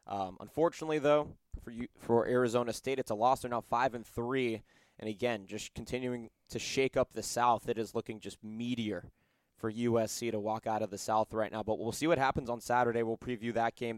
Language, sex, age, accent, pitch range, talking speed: English, male, 20-39, American, 115-135 Hz, 215 wpm